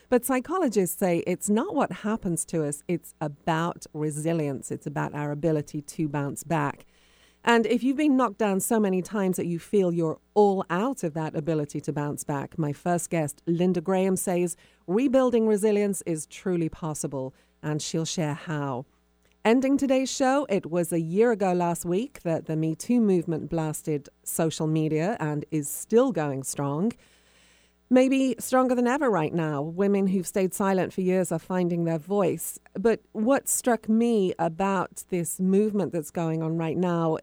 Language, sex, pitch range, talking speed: English, female, 155-200 Hz, 170 wpm